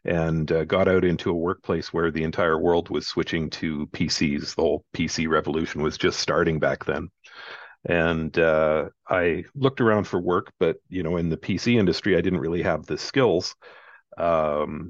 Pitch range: 80-95 Hz